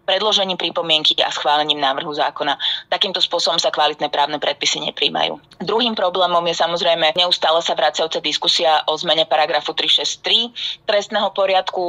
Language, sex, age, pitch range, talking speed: Slovak, female, 20-39, 155-175 Hz, 135 wpm